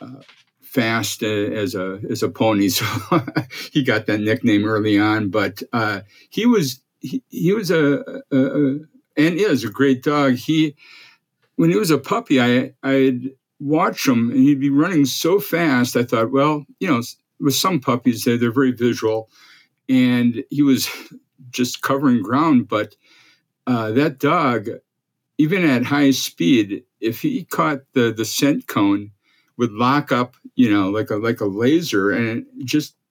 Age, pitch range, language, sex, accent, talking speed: 50-69, 110-150 Hz, English, male, American, 165 wpm